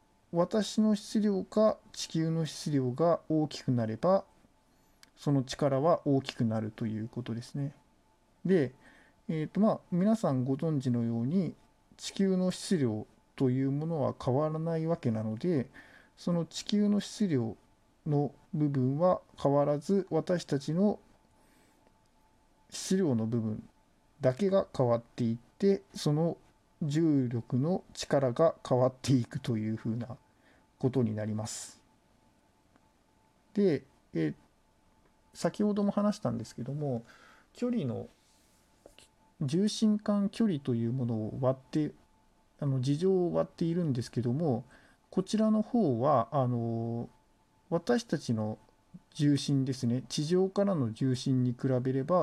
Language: Japanese